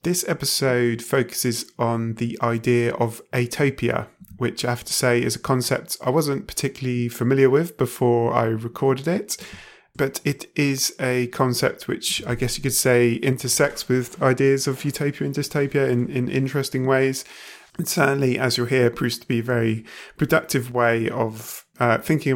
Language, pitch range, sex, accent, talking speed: English, 115-135 Hz, male, British, 165 wpm